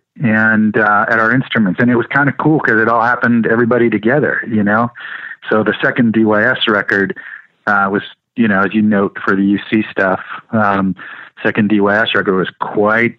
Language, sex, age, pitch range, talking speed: English, male, 30-49, 100-115 Hz, 185 wpm